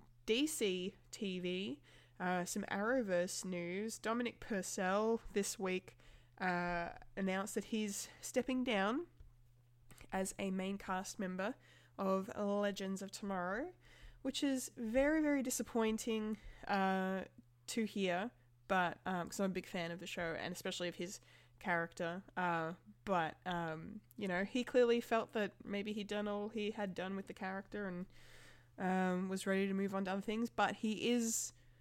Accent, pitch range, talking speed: Australian, 175-215 Hz, 150 wpm